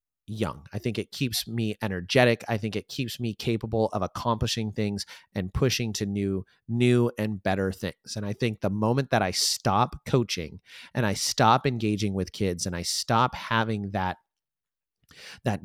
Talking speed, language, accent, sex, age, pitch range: 175 wpm, English, American, male, 30-49, 100-125 Hz